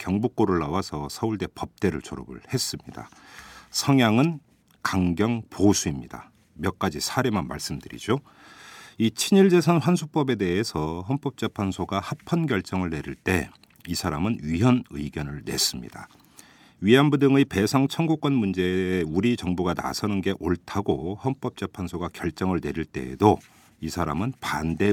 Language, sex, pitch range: Korean, male, 85-125 Hz